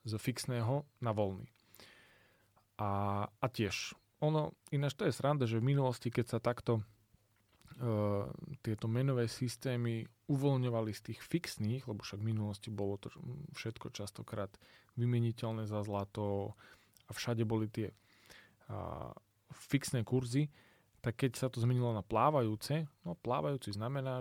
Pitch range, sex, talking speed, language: 105-125 Hz, male, 135 wpm, Slovak